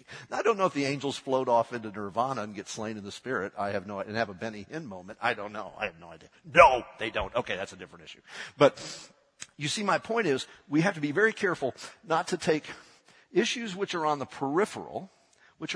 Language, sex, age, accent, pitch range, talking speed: English, male, 50-69, American, 105-155 Hz, 245 wpm